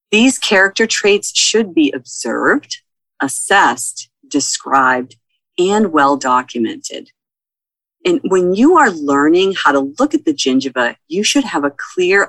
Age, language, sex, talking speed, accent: 40-59, English, female, 125 wpm, American